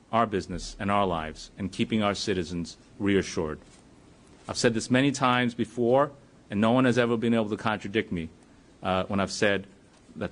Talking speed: 180 wpm